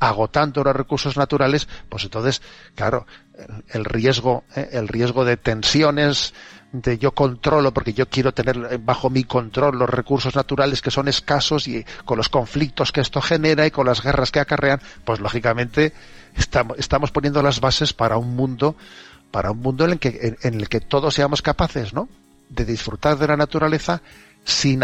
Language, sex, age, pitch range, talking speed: Spanish, male, 40-59, 115-145 Hz, 180 wpm